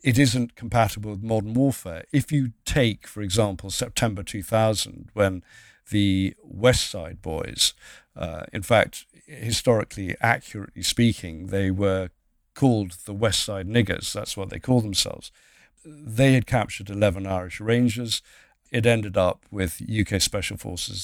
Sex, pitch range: male, 100-120 Hz